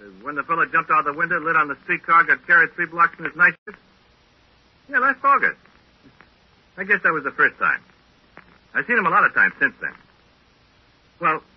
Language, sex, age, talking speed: English, male, 60-79, 200 wpm